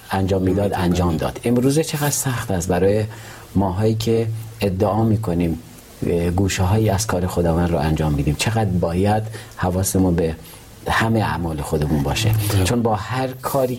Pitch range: 95-115 Hz